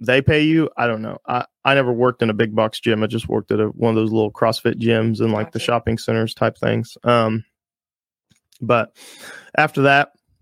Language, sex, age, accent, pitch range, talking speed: English, male, 20-39, American, 115-125 Hz, 215 wpm